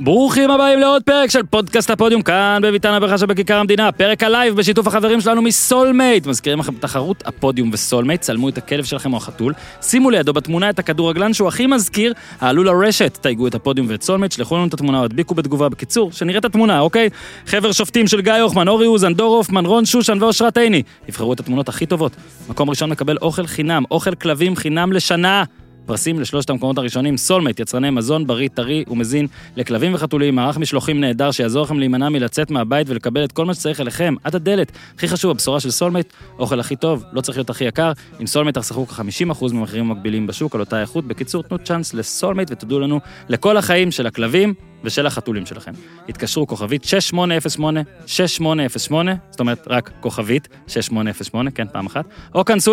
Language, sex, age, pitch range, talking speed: Hebrew, male, 20-39, 130-195 Hz, 160 wpm